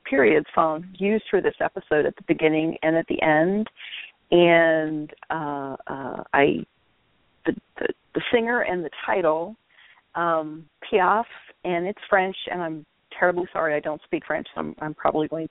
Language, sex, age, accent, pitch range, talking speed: English, female, 50-69, American, 155-185 Hz, 165 wpm